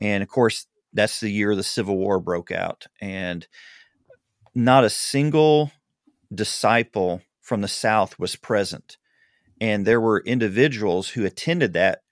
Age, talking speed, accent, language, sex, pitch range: 40-59, 140 wpm, American, English, male, 95-120 Hz